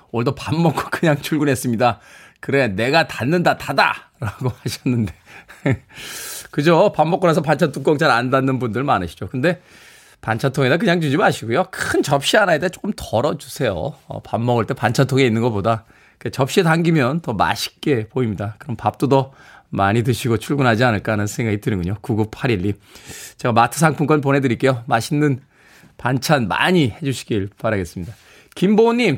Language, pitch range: Korean, 110-155 Hz